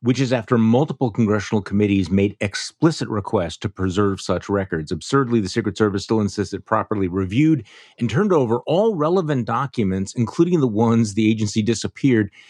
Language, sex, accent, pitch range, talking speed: English, male, American, 95-120 Hz, 160 wpm